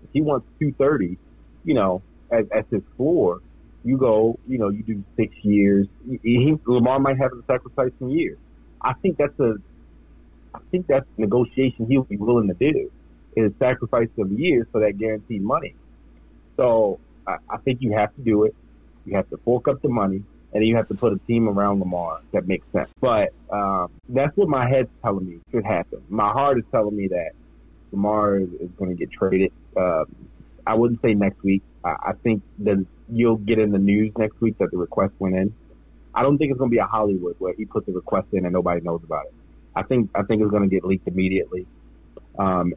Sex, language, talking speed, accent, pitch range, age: male, English, 215 wpm, American, 95-120 Hz, 30-49